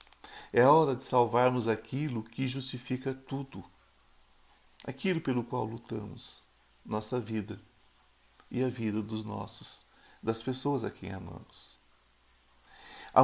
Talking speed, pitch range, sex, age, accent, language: 115 wpm, 115-155 Hz, male, 50-69, Brazilian, Portuguese